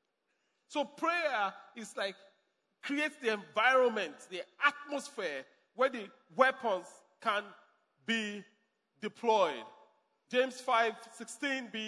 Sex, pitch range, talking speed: male, 210-275 Hz, 90 wpm